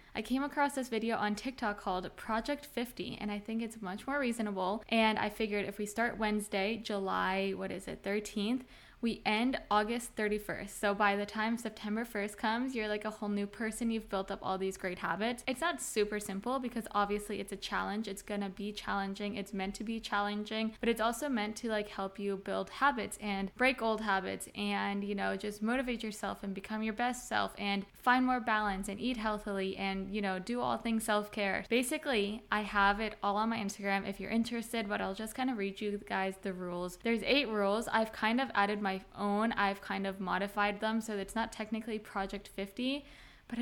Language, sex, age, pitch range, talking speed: English, female, 10-29, 200-230 Hz, 210 wpm